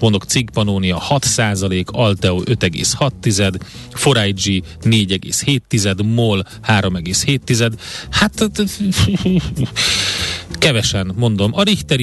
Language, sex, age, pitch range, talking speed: Hungarian, male, 30-49, 95-125 Hz, 75 wpm